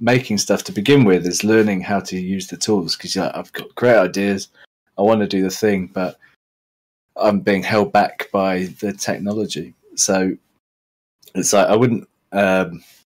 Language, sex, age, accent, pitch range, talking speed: English, male, 20-39, British, 90-110 Hz, 170 wpm